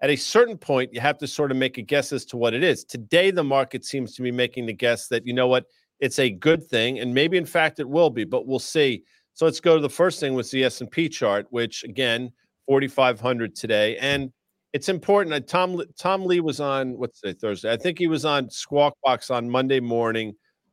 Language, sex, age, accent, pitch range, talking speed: English, male, 40-59, American, 125-150 Hz, 235 wpm